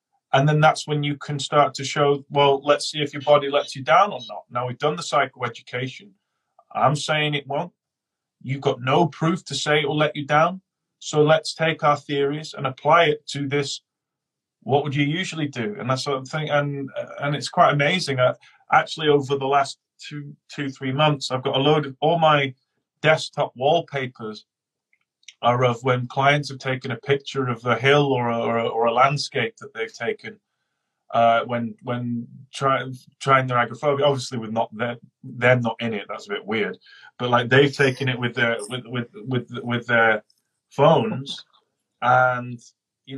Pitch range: 125-150 Hz